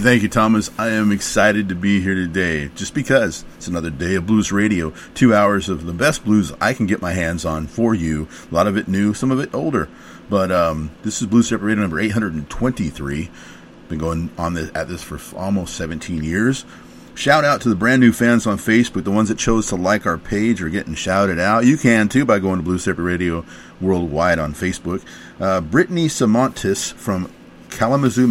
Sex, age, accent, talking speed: male, 40-59, American, 215 wpm